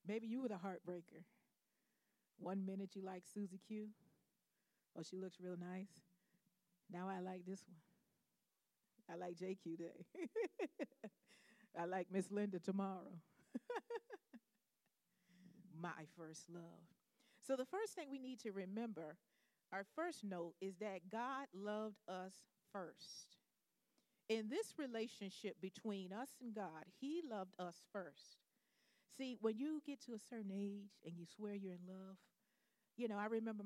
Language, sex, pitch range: English, female, 185-230 Hz